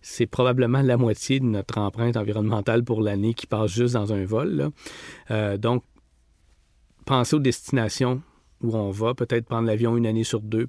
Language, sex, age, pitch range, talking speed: French, male, 40-59, 115-135 Hz, 175 wpm